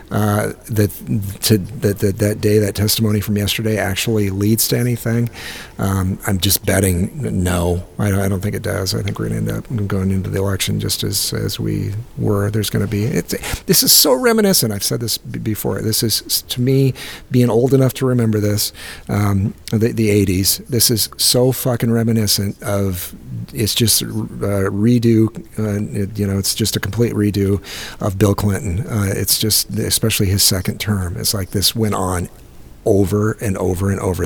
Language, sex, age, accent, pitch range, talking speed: English, male, 50-69, American, 100-115 Hz, 190 wpm